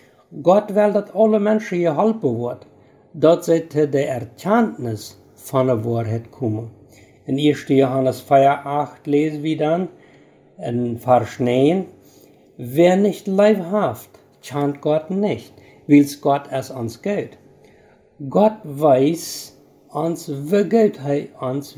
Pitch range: 125-185 Hz